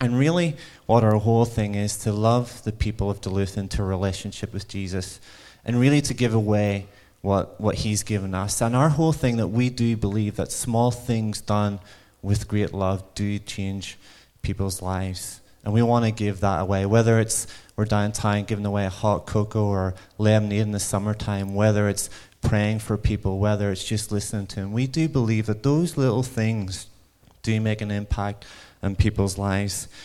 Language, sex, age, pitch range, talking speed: English, male, 30-49, 105-120 Hz, 185 wpm